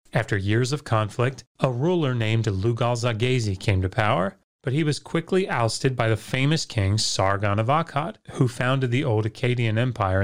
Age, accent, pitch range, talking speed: 30-49, American, 105-140 Hz, 170 wpm